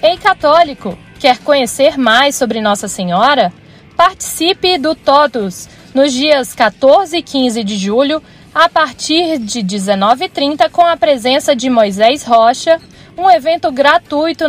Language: Portuguese